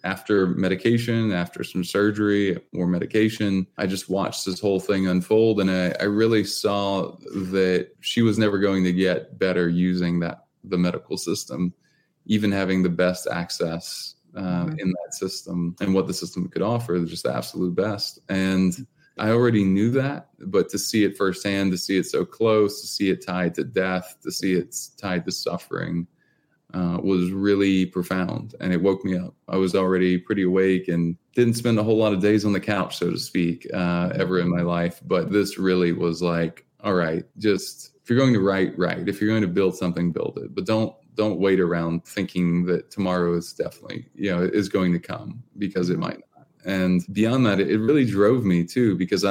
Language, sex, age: English, male, 20-39